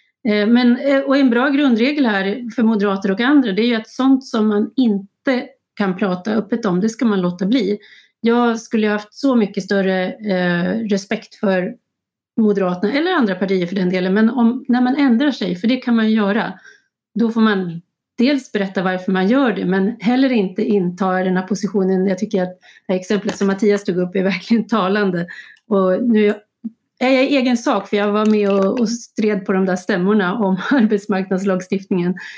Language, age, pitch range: Swedish, 30-49, 195-235 Hz